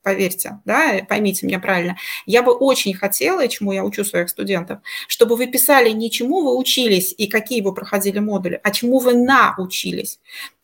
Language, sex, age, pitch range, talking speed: Russian, female, 30-49, 195-250 Hz, 170 wpm